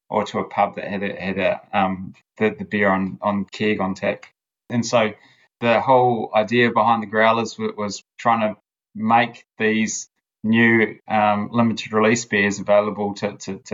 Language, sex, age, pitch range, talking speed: English, male, 20-39, 100-110 Hz, 180 wpm